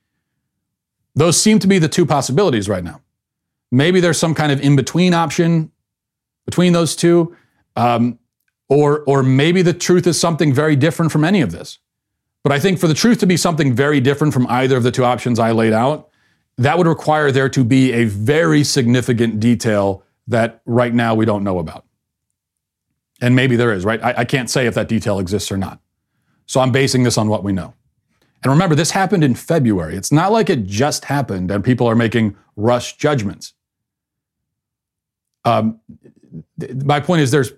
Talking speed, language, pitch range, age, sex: 185 wpm, English, 110-150 Hz, 40-59, male